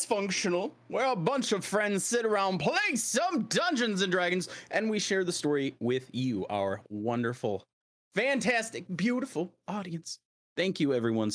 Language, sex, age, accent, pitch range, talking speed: English, male, 30-49, American, 130-210 Hz, 150 wpm